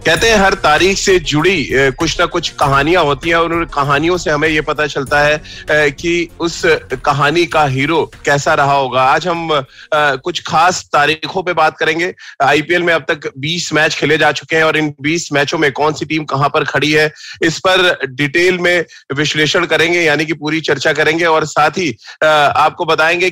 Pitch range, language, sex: 145-170 Hz, Hindi, male